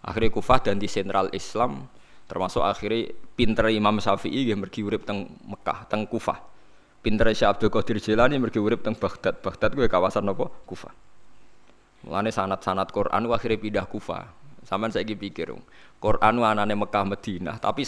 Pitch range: 105-130 Hz